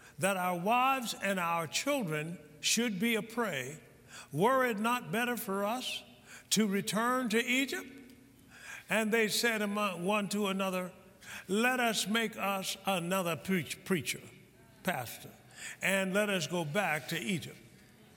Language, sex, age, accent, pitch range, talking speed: English, male, 60-79, American, 155-220 Hz, 130 wpm